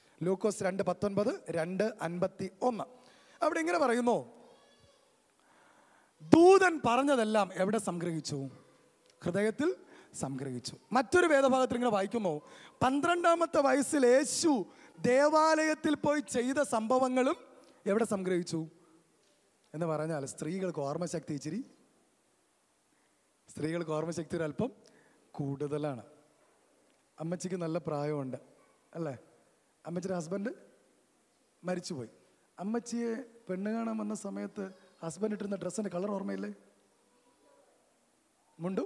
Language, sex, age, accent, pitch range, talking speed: Malayalam, male, 20-39, native, 175-250 Hz, 85 wpm